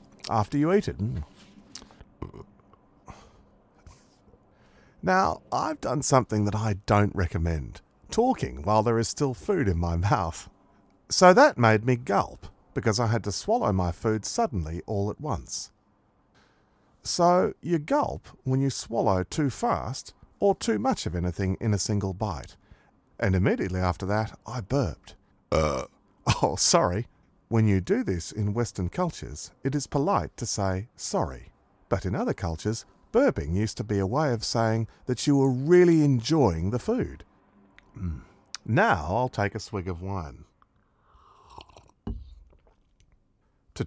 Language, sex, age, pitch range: Korean, male, 40-59, 95-130 Hz